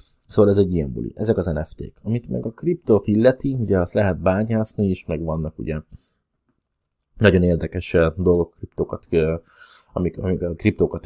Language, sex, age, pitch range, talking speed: Hungarian, male, 20-39, 80-95 Hz, 155 wpm